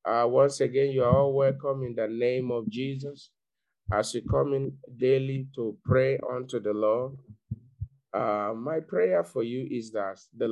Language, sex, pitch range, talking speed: English, male, 105-125 Hz, 170 wpm